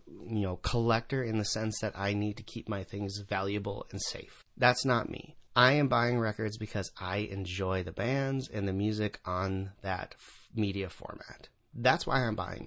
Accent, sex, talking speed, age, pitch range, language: American, male, 190 wpm, 30-49, 100-125 Hz, English